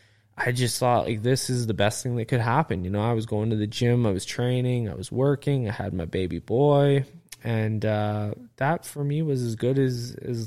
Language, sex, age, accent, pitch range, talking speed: English, male, 20-39, American, 105-120 Hz, 235 wpm